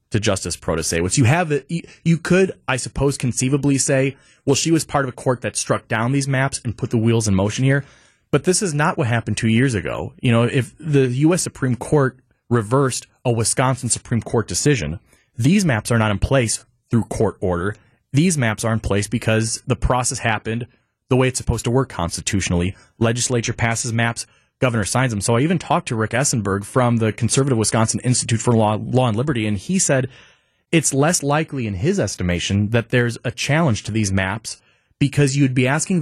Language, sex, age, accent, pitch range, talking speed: English, male, 30-49, American, 110-140 Hz, 205 wpm